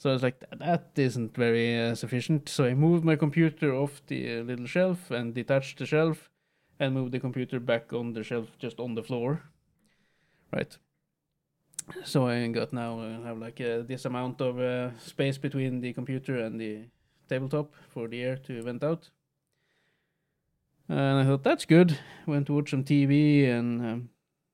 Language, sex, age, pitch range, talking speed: English, male, 20-39, 120-155 Hz, 180 wpm